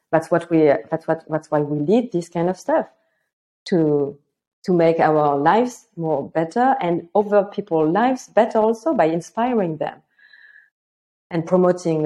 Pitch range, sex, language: 165-205 Hz, female, English